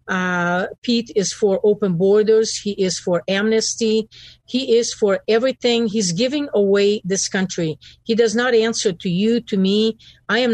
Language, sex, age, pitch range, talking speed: English, female, 50-69, 180-220 Hz, 165 wpm